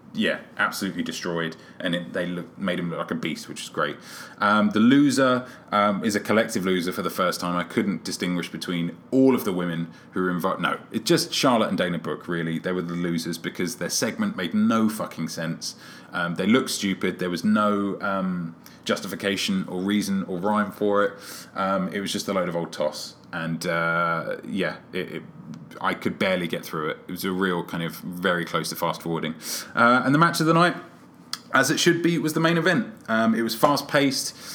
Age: 20-39